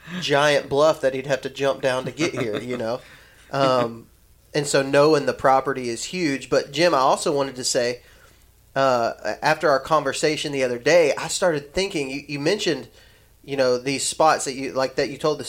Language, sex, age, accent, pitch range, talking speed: English, male, 30-49, American, 125-150 Hz, 200 wpm